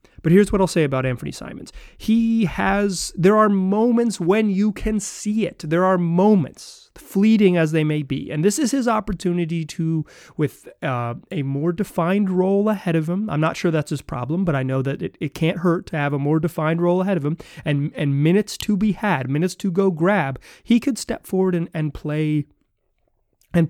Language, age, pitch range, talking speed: English, 30-49, 140-190 Hz, 210 wpm